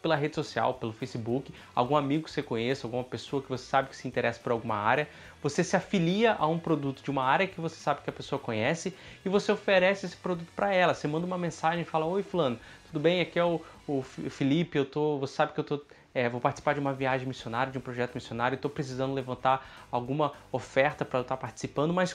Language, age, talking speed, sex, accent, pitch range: Portuguese, 20-39, 235 wpm, male, Brazilian, 130-170 Hz